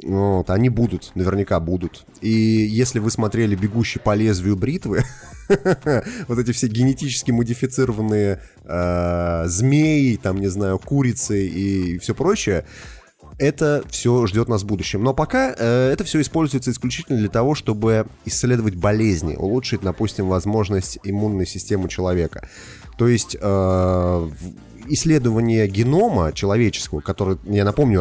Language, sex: Russian, male